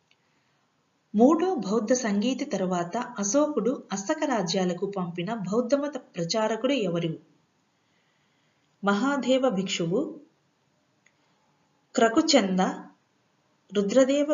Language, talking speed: Telugu, 65 wpm